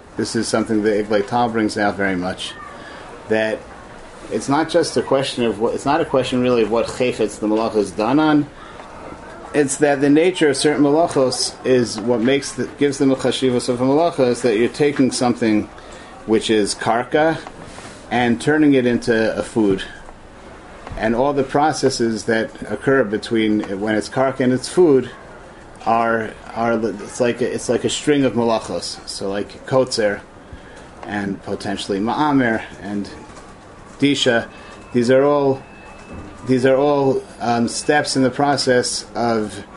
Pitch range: 110-135 Hz